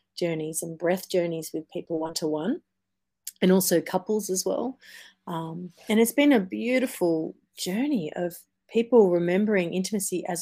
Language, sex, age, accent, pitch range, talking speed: English, female, 30-49, Australian, 165-200 Hz, 140 wpm